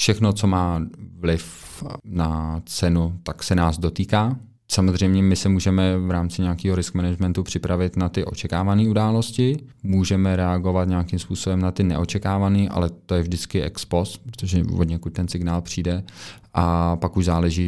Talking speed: 160 wpm